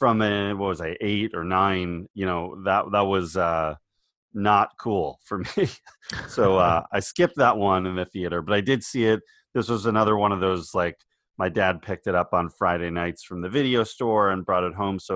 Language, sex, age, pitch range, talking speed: English, male, 30-49, 90-115 Hz, 220 wpm